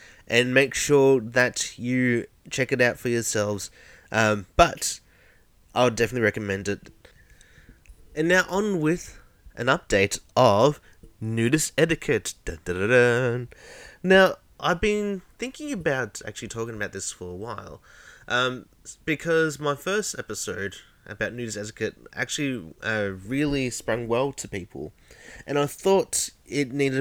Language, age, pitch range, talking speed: English, 20-39, 105-150 Hz, 130 wpm